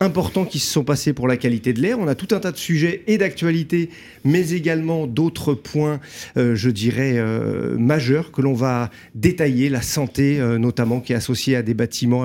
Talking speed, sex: 205 wpm, male